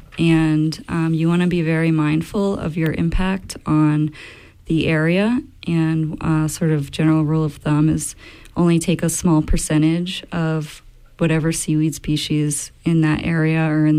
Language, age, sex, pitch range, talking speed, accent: English, 30-49, female, 155-170 Hz, 160 wpm, American